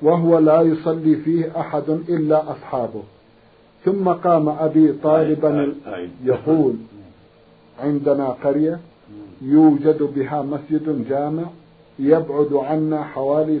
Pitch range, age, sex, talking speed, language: 140-165 Hz, 50-69, male, 95 wpm, Arabic